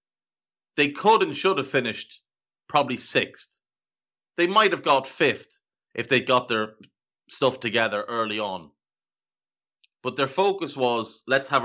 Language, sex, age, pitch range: English, male, 30-49, 105-140 Hz